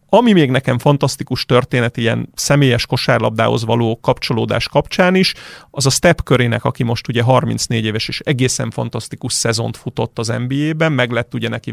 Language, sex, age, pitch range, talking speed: Hungarian, male, 40-59, 120-145 Hz, 165 wpm